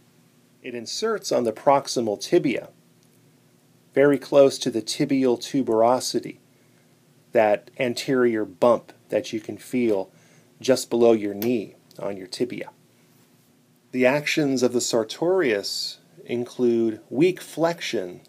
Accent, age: American, 30-49